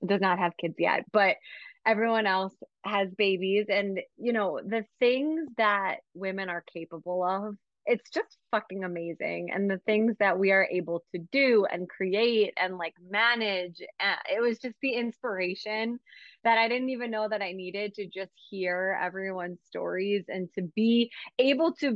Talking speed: 170 wpm